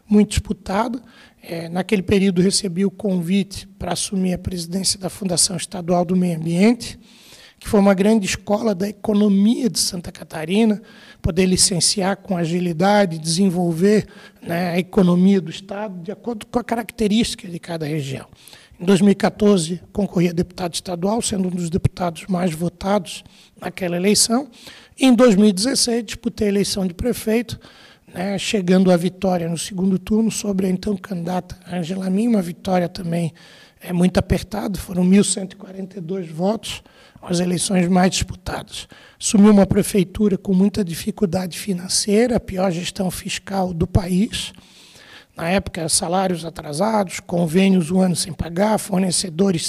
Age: 60-79